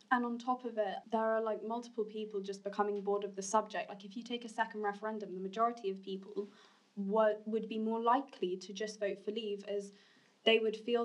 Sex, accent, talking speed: female, British, 225 wpm